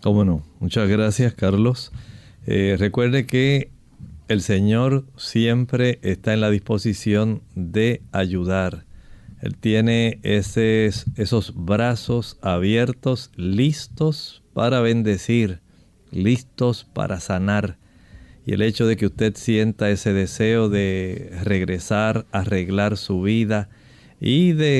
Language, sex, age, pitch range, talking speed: Spanish, male, 50-69, 100-120 Hz, 110 wpm